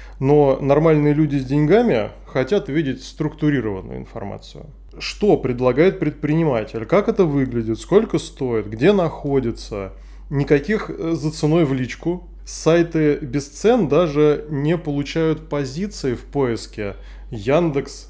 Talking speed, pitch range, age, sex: 115 wpm, 130-165 Hz, 20-39, male